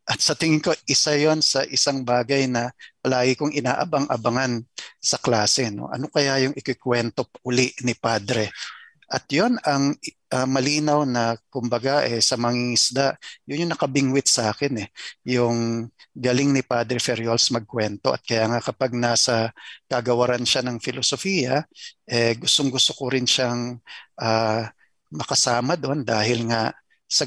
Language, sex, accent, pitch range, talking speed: Filipino, male, native, 115-140 Hz, 145 wpm